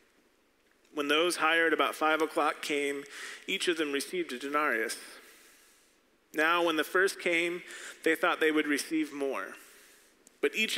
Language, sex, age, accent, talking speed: English, male, 40-59, American, 145 wpm